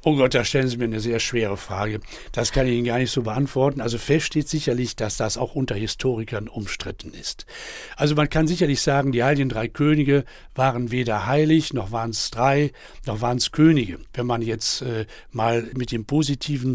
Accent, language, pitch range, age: German, German, 120-150 Hz, 60-79